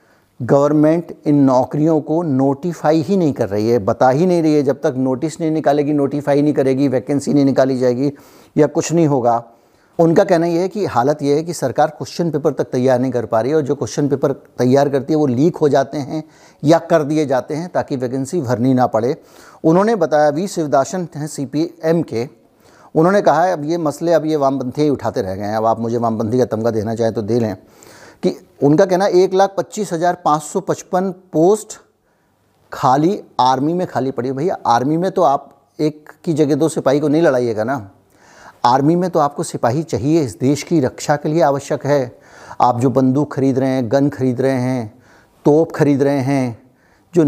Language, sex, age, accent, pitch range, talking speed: Hindi, male, 50-69, native, 130-160 Hz, 205 wpm